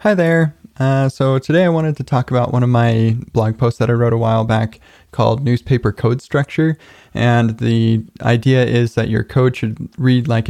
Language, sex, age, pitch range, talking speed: English, male, 20-39, 110-120 Hz, 200 wpm